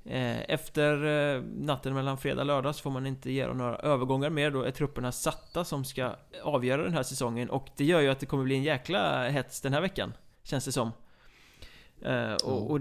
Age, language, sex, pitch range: 20-39, Swedish, male, 125-145 Hz